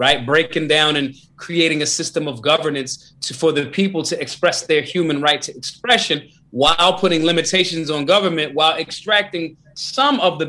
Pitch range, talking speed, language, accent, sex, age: 145-175 Hz, 170 wpm, English, American, male, 30-49